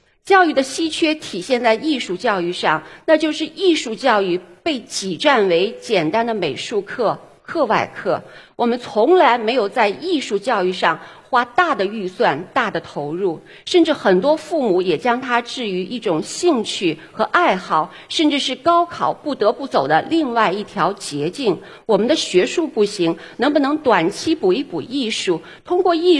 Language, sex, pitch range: Chinese, female, 195-310 Hz